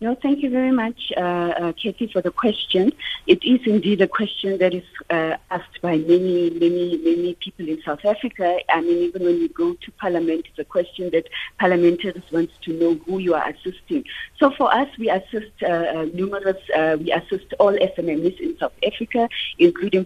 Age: 50-69